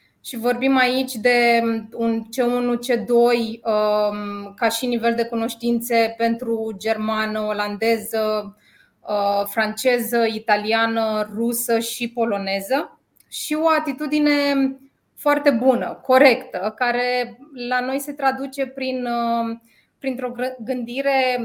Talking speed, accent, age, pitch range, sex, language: 90 wpm, native, 20-39, 230-270 Hz, female, Romanian